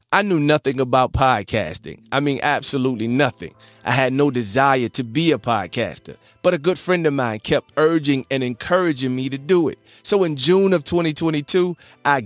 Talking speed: 180 wpm